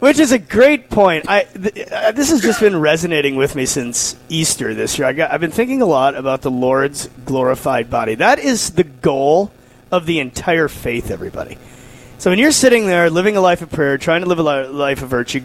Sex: male